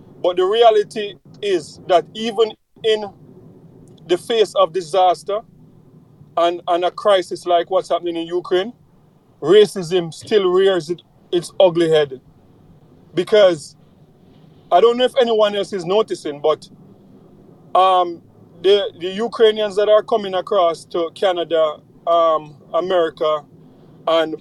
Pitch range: 165-205 Hz